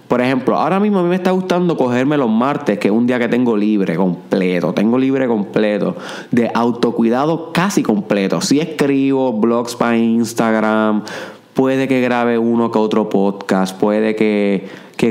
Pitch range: 105-135 Hz